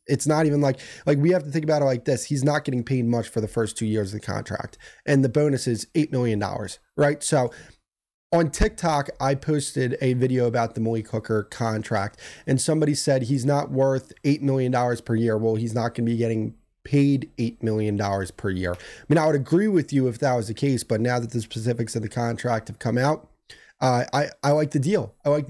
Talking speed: 230 wpm